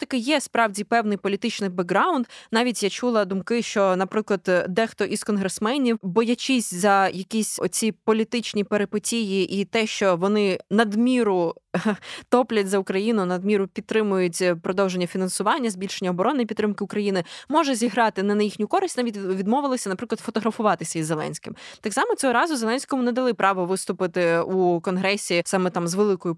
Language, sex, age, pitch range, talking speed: Ukrainian, female, 20-39, 185-225 Hz, 145 wpm